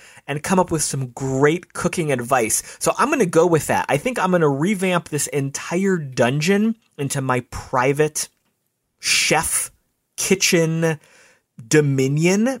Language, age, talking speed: English, 30-49, 145 wpm